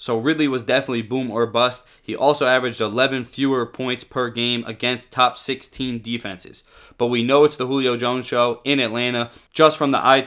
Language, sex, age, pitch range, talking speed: English, male, 20-39, 120-135 Hz, 195 wpm